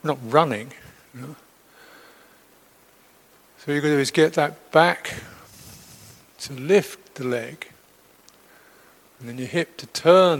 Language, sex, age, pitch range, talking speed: English, male, 60-79, 130-155 Hz, 115 wpm